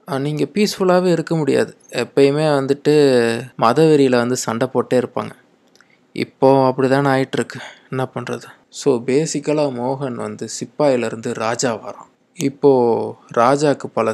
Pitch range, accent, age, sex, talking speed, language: 115-135 Hz, native, 20-39, male, 110 wpm, Tamil